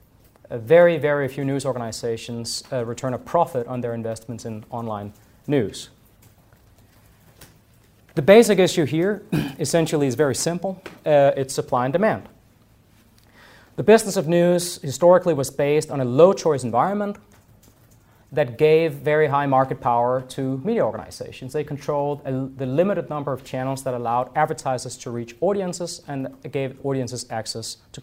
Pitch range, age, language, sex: 115-165 Hz, 30-49, English, male